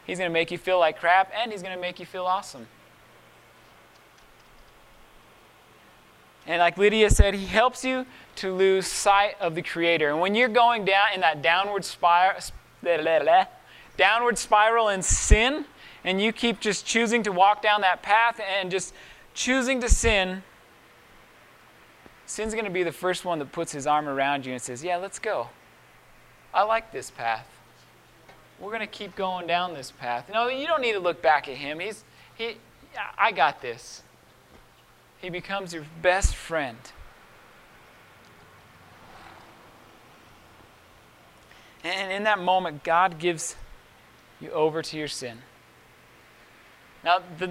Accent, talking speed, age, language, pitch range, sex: American, 150 wpm, 20-39, English, 170-215 Hz, male